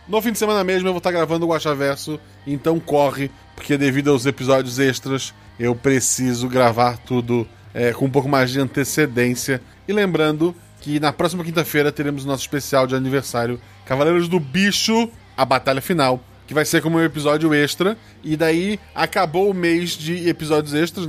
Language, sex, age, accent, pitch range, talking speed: Portuguese, male, 20-39, Brazilian, 125-160 Hz, 175 wpm